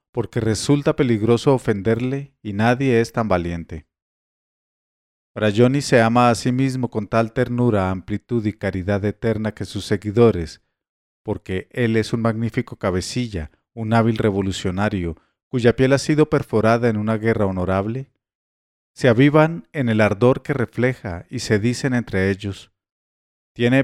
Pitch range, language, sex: 100-130 Hz, English, male